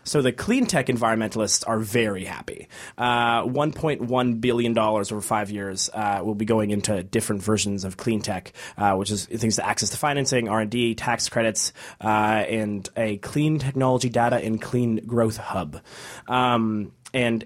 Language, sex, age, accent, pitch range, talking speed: English, male, 20-39, American, 110-130 Hz, 180 wpm